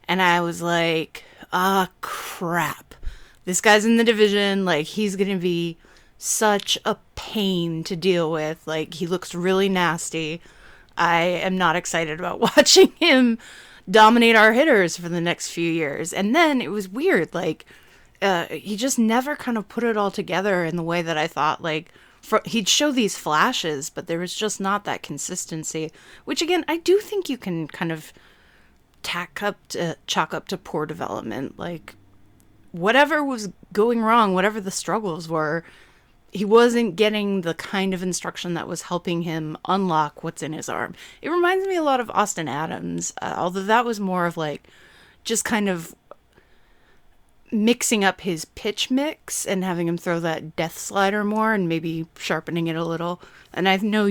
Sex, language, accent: female, English, American